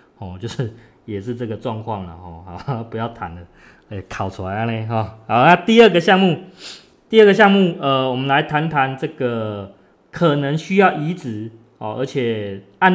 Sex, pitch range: male, 115-165 Hz